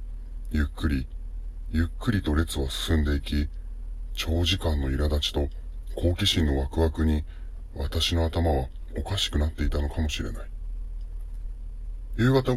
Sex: female